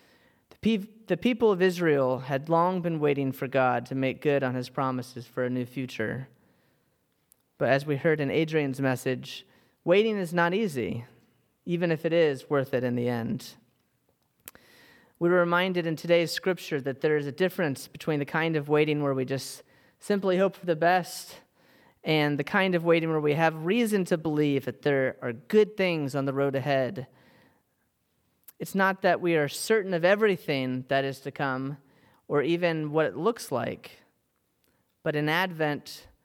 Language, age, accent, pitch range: English, 30-49, American, 130-170 Hz